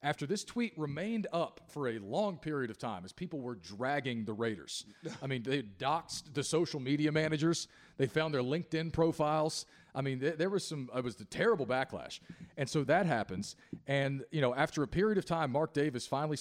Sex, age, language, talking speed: male, 40-59, English, 205 wpm